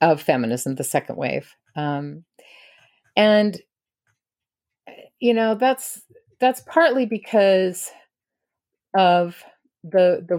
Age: 50-69